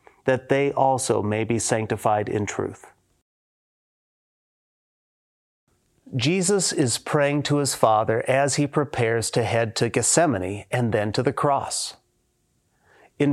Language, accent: English, American